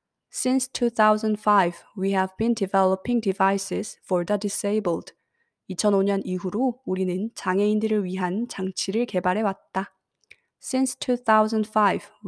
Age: 20-39